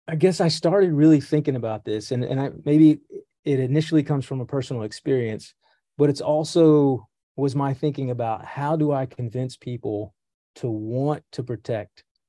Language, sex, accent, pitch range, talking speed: English, male, American, 115-145 Hz, 170 wpm